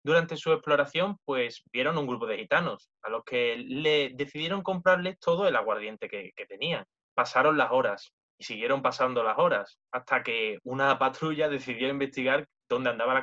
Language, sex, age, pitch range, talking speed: Spanish, male, 20-39, 140-195 Hz, 170 wpm